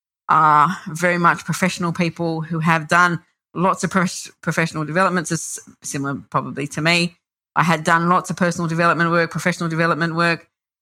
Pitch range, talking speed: 155-180 Hz, 150 wpm